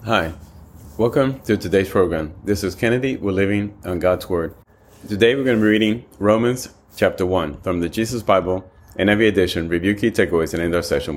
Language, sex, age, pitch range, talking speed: English, male, 30-49, 90-110 Hz, 195 wpm